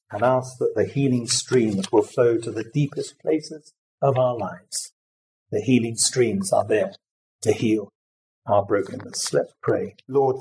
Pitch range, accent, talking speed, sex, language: 120-150 Hz, British, 155 wpm, male, English